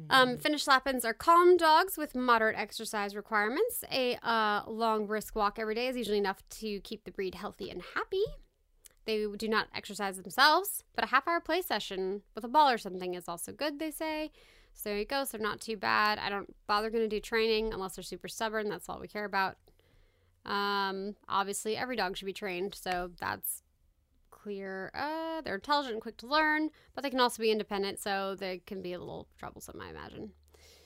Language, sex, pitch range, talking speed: English, female, 195-260 Hz, 200 wpm